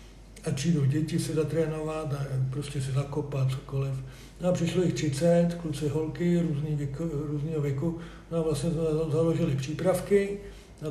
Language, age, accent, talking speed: Czech, 60-79, native, 150 wpm